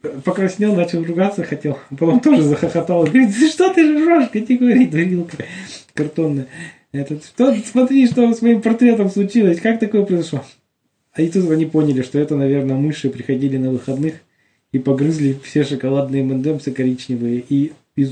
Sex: male